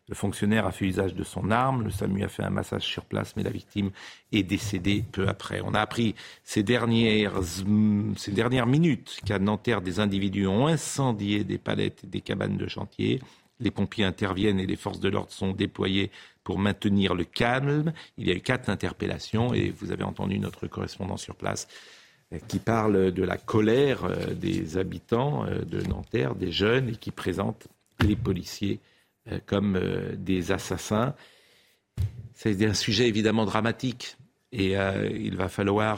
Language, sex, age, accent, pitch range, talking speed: French, male, 50-69, French, 95-115 Hz, 170 wpm